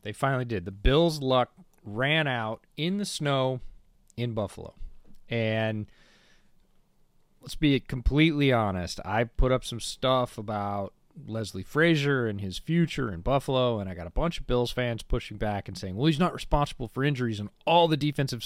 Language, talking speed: English, 170 wpm